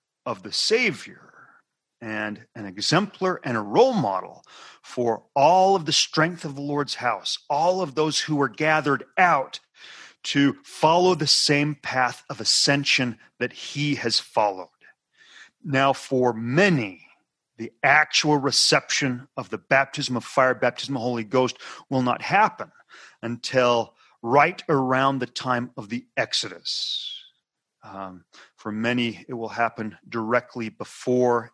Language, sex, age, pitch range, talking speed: English, male, 40-59, 115-145 Hz, 135 wpm